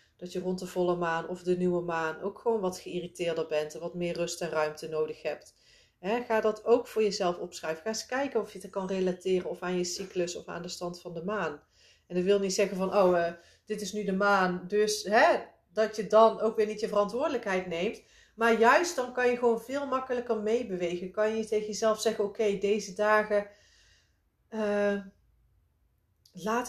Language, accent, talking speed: Dutch, Dutch, 200 wpm